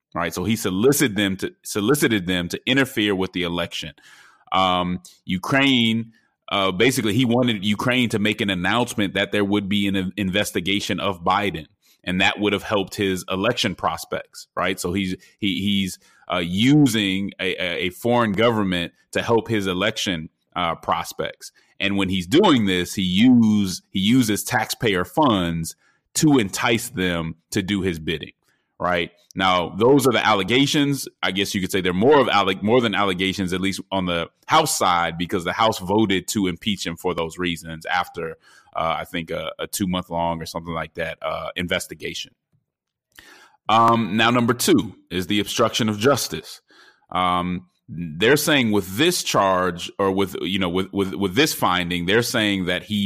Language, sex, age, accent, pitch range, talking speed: English, male, 30-49, American, 90-110 Hz, 170 wpm